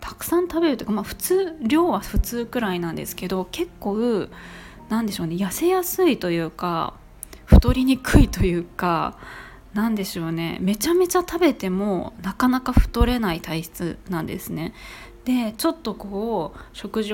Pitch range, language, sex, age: 180-250 Hz, Japanese, female, 20-39